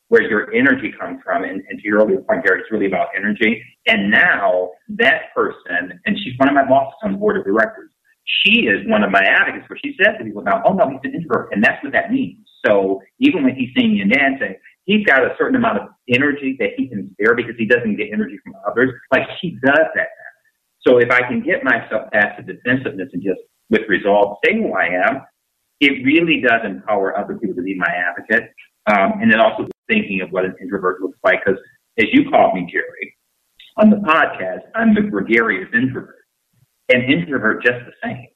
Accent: American